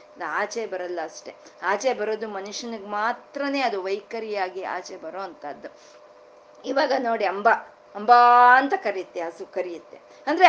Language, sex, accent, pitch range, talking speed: Kannada, female, native, 220-295 Hz, 120 wpm